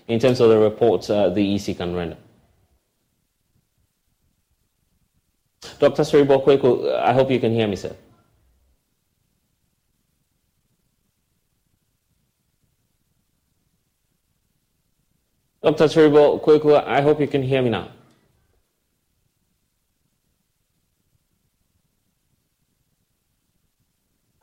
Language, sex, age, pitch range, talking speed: English, male, 30-49, 110-130 Hz, 75 wpm